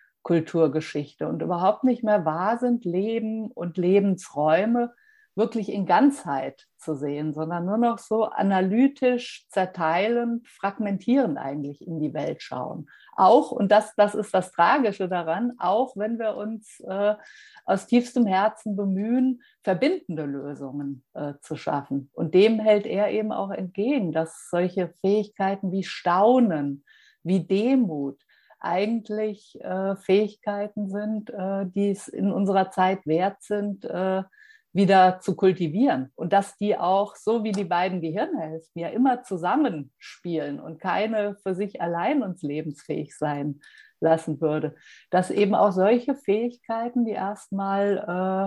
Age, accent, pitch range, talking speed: 50-69, German, 170-220 Hz, 130 wpm